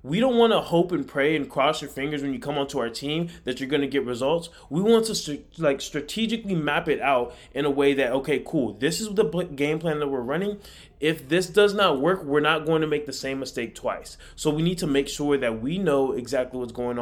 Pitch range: 130-170 Hz